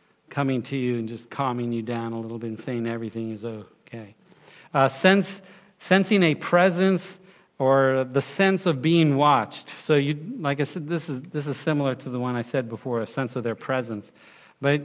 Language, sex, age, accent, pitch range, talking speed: English, male, 50-69, American, 130-165 Hz, 200 wpm